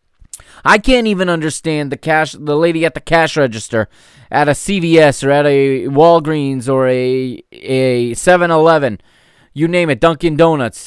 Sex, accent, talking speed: male, American, 155 wpm